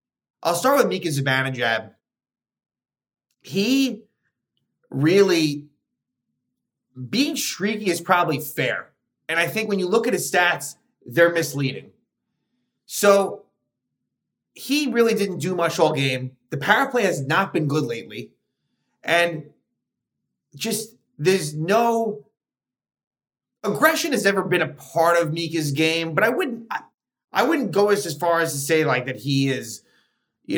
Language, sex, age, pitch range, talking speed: English, male, 30-49, 145-200 Hz, 135 wpm